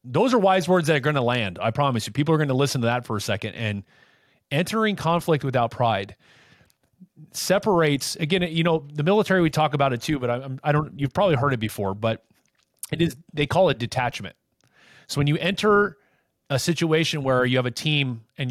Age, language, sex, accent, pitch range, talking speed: 30-49, English, male, American, 125-165 Hz, 215 wpm